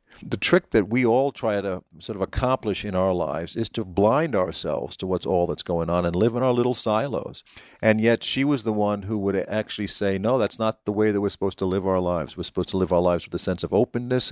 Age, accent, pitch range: 50-69, American, 85-110 Hz